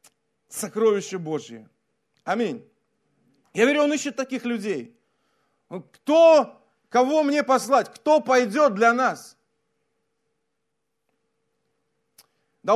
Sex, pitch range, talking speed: male, 180-255 Hz, 85 wpm